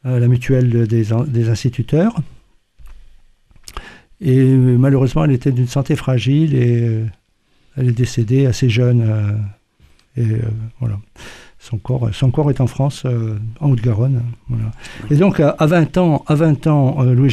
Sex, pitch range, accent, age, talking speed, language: male, 115-140 Hz, French, 60-79, 150 wpm, French